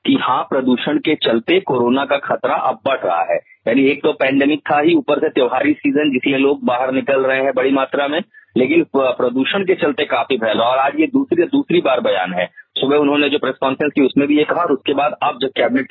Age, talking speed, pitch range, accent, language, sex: 40-59, 225 wpm, 135-190 Hz, native, Hindi, male